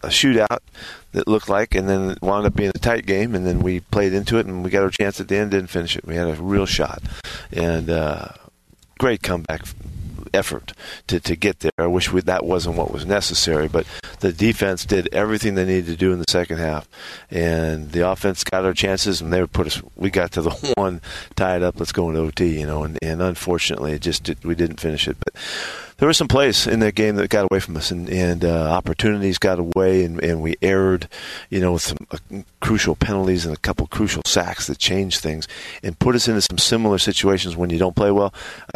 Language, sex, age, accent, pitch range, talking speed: English, male, 50-69, American, 85-100 Hz, 235 wpm